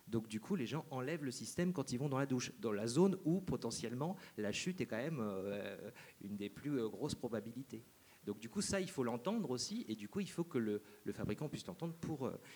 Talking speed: 250 wpm